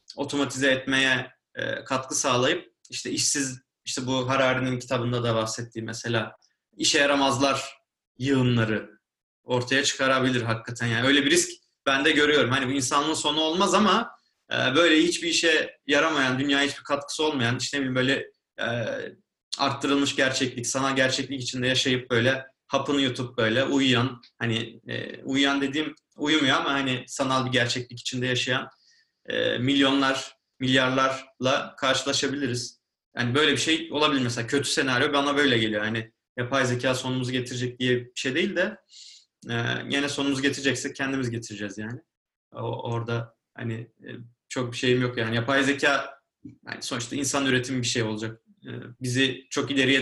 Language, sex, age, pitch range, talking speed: Turkish, male, 30-49, 120-140 Hz, 145 wpm